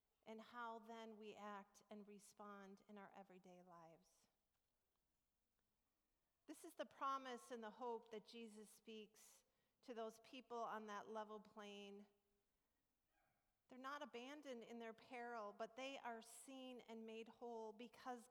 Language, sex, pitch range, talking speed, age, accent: English, female, 220-270 Hz, 135 wpm, 40-59, American